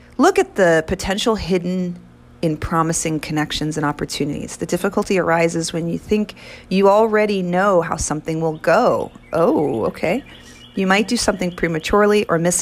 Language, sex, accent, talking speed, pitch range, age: English, female, American, 150 wpm, 150-190 Hz, 40-59